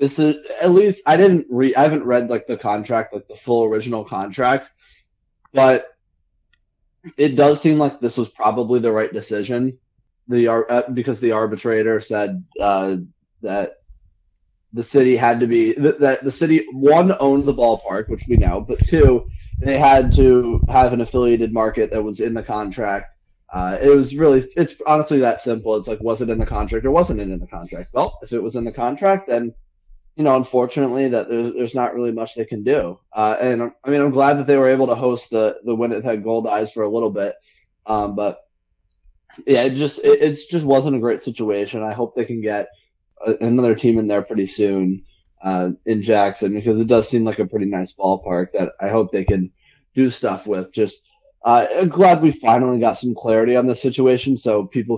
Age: 20-39